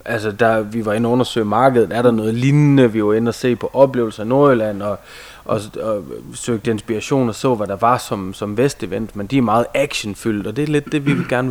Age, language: 20-39, Danish